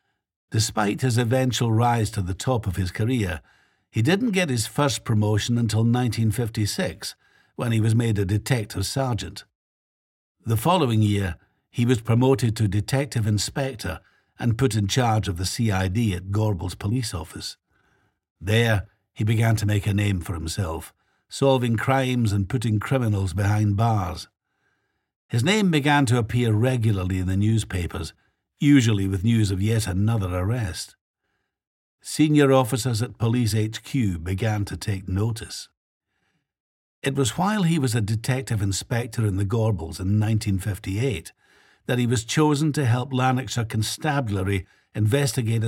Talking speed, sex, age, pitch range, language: 140 wpm, male, 60-79, 100-125 Hz, English